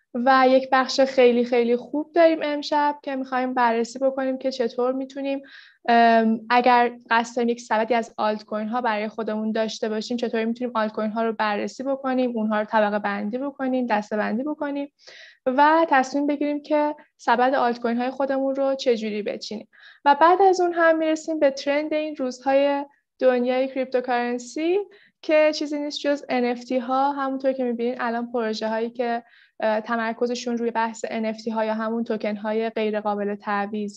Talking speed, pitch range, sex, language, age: 150 wpm, 230-280 Hz, female, Persian, 20-39